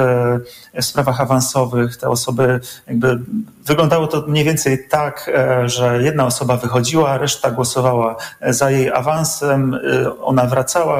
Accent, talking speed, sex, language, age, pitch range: native, 115 wpm, male, Polish, 40-59, 120-150 Hz